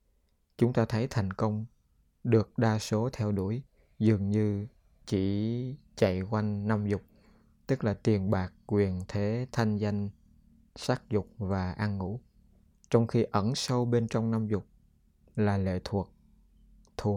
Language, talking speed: Vietnamese, 145 wpm